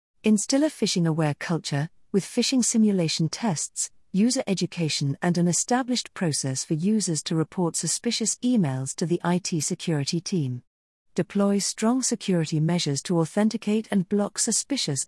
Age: 40-59